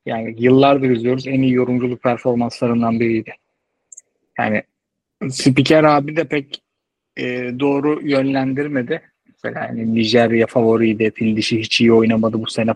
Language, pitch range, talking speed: Turkish, 125-190 Hz, 120 wpm